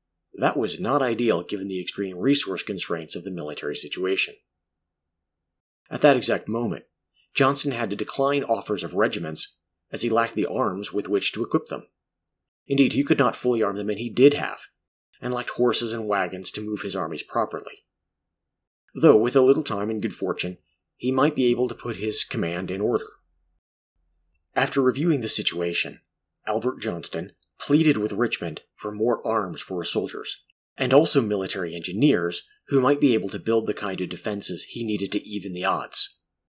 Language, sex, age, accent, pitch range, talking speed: English, male, 30-49, American, 90-130 Hz, 180 wpm